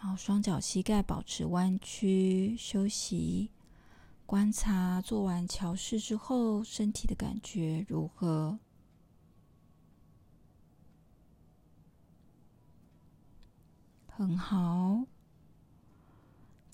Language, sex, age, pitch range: Chinese, female, 20-39, 175-210 Hz